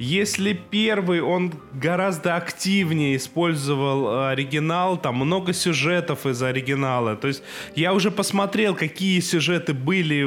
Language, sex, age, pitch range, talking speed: Russian, male, 20-39, 150-195 Hz, 115 wpm